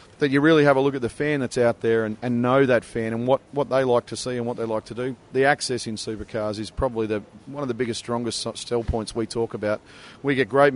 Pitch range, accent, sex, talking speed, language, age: 115-135 Hz, Australian, male, 280 wpm, English, 40-59